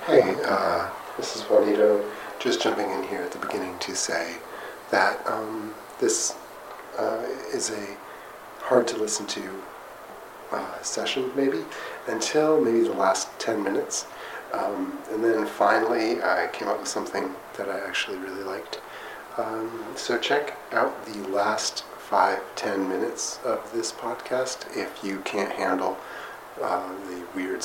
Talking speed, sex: 135 wpm, male